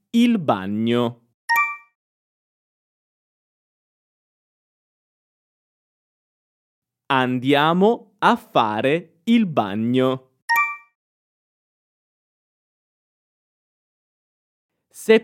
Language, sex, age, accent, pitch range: Italian, male, 20-39, native, 120-185 Hz